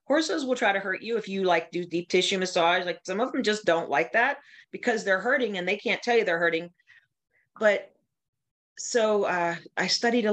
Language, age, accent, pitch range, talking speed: English, 40-59, American, 170-215 Hz, 215 wpm